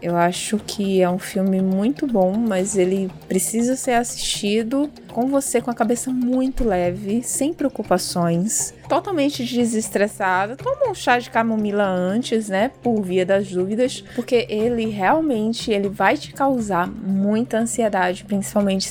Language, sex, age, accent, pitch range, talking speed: Portuguese, female, 20-39, Brazilian, 190-245 Hz, 145 wpm